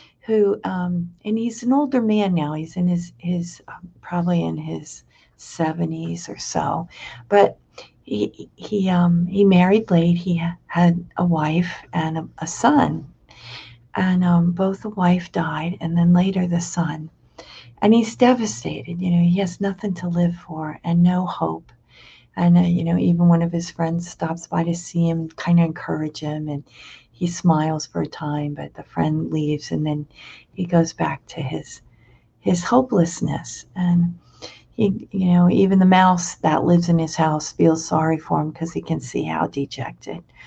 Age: 50-69